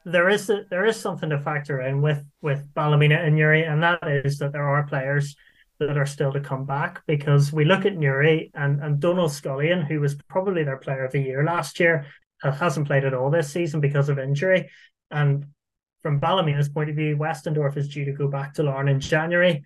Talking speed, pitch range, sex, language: 215 wpm, 140-155 Hz, male, English